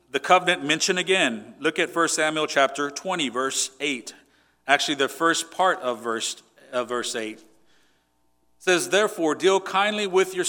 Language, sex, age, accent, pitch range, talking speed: English, male, 40-59, American, 130-165 Hz, 160 wpm